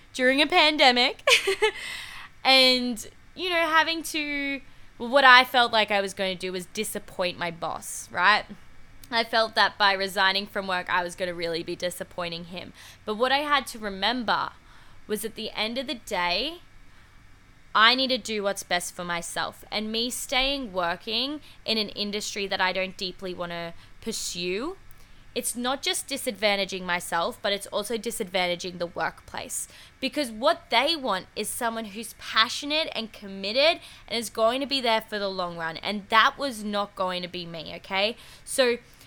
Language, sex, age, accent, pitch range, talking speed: English, female, 10-29, Australian, 195-265 Hz, 175 wpm